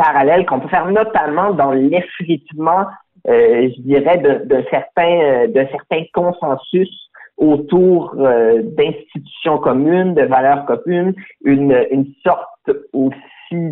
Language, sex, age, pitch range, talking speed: French, male, 50-69, 135-185 Hz, 120 wpm